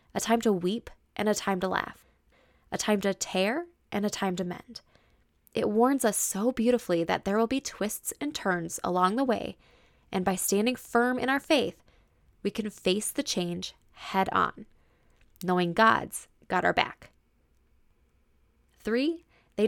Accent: American